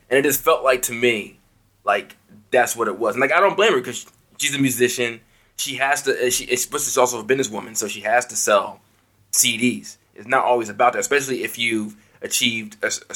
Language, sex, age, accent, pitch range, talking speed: English, male, 20-39, American, 105-125 Hz, 220 wpm